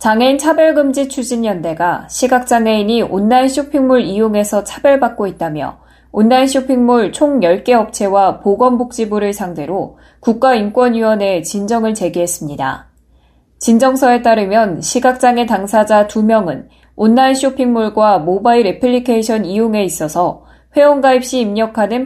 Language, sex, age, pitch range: Korean, female, 20-39, 185-250 Hz